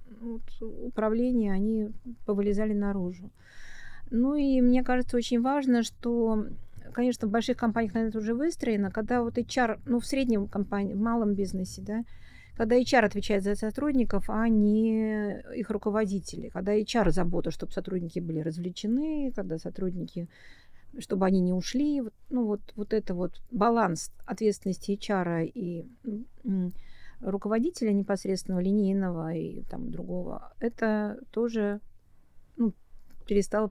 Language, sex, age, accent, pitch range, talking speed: Russian, female, 50-69, native, 205-245 Hz, 130 wpm